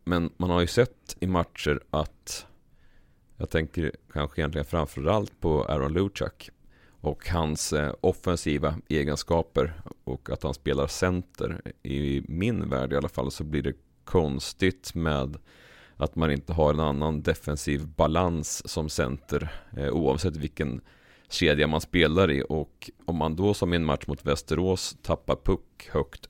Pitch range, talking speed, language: 75-90 Hz, 145 wpm, Swedish